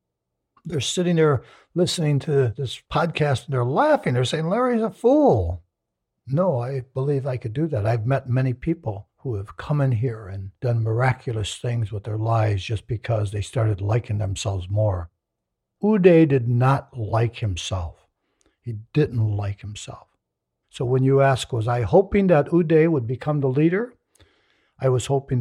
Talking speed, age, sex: 165 wpm, 60-79, male